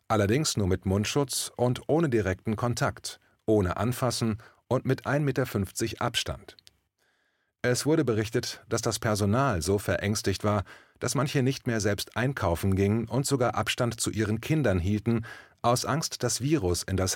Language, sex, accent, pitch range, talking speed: German, male, German, 95-125 Hz, 155 wpm